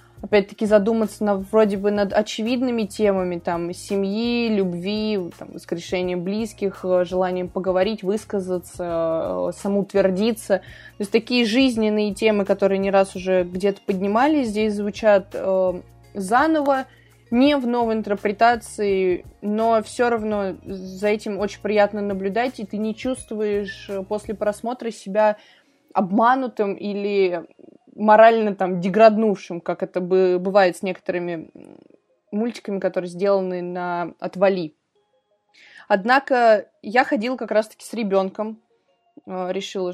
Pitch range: 190-230 Hz